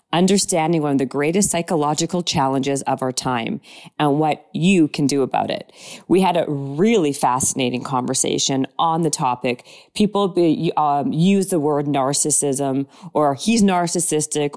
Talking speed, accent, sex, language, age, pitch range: 145 wpm, American, female, English, 40-59, 140-175 Hz